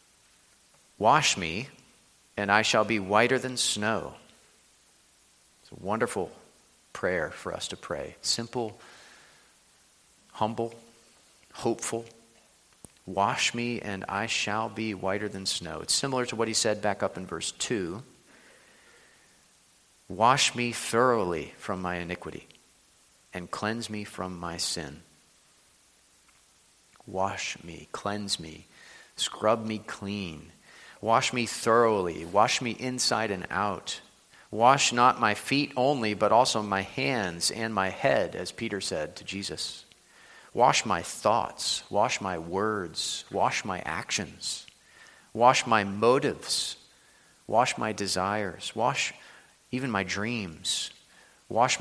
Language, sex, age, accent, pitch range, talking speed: English, male, 40-59, American, 95-115 Hz, 120 wpm